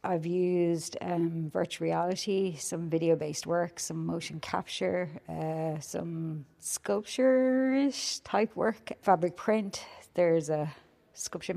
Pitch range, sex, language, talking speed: 155-180 Hz, female, English, 110 wpm